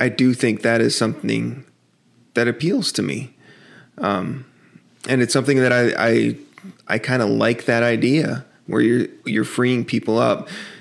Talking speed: 160 wpm